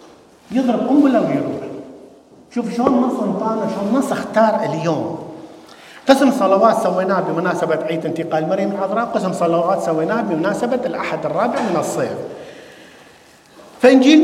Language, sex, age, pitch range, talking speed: English, male, 50-69, 185-260 Hz, 120 wpm